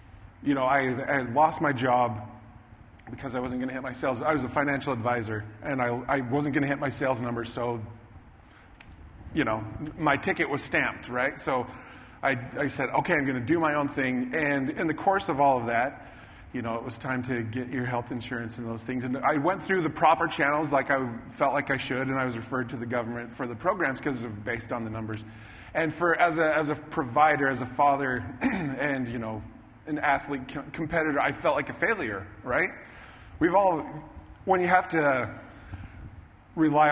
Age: 30-49